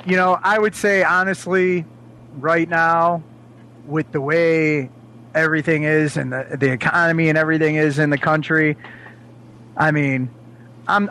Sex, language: male, English